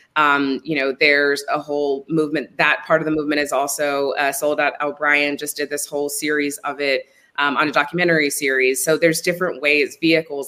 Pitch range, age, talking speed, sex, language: 135-155 Hz, 20-39, 200 wpm, female, English